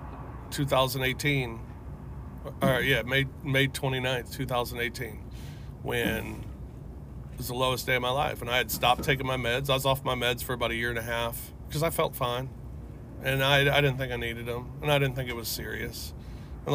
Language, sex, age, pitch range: English, male, 40-59, 115-135 Hz